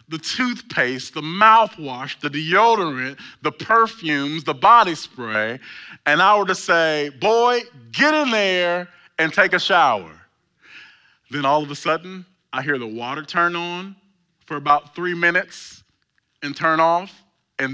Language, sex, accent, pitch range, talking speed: English, male, American, 135-185 Hz, 145 wpm